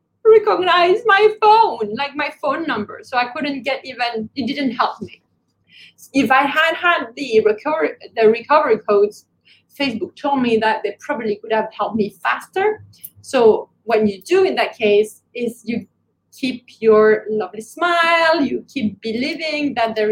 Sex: female